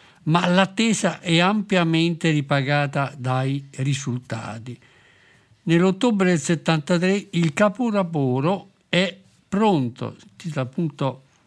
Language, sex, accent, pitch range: Italian, male, native, 140-175 Hz